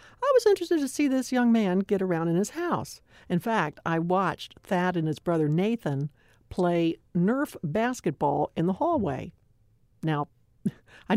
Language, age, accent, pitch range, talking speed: English, 60-79, American, 155-235 Hz, 160 wpm